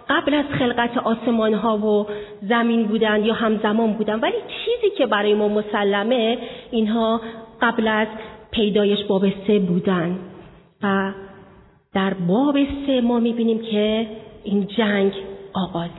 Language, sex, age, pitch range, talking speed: Persian, female, 40-59, 190-235 Hz, 120 wpm